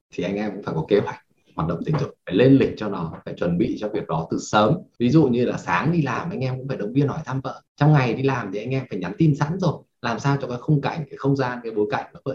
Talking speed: 320 wpm